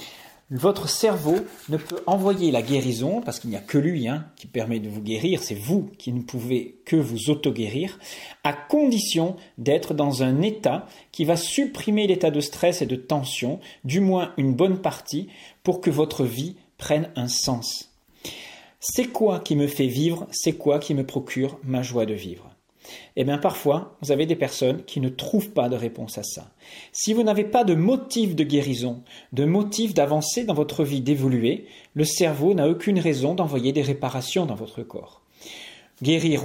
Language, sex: English, male